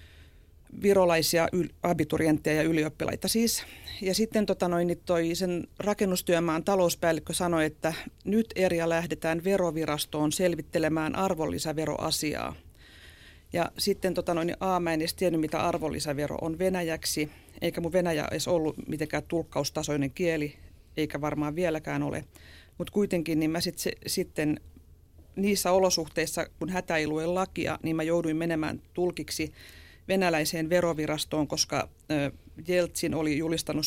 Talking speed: 125 wpm